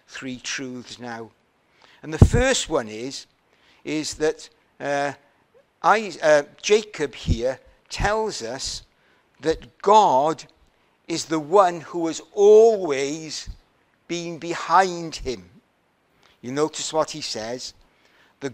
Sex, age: male, 60-79